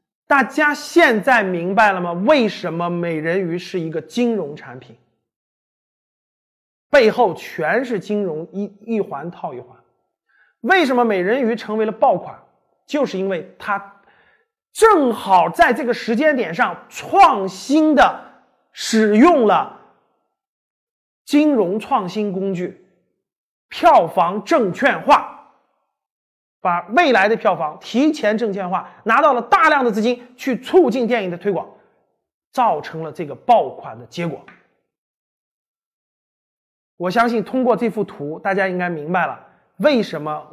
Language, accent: Chinese, native